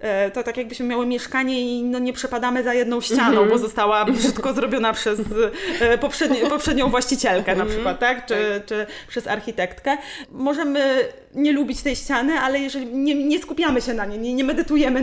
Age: 20-39